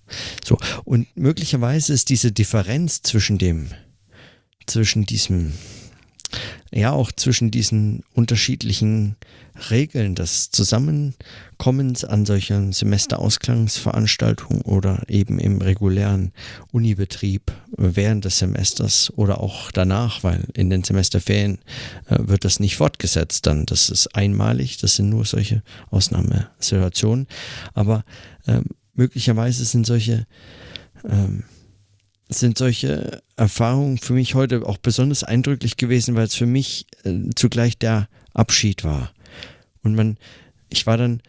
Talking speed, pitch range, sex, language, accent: 110 wpm, 100-125 Hz, male, German, German